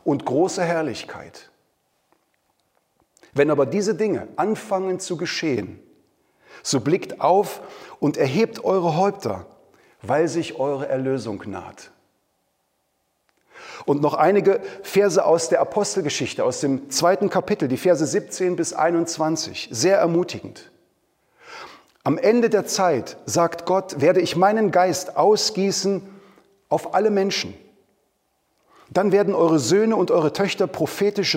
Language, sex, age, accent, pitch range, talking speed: German, male, 40-59, German, 155-195 Hz, 120 wpm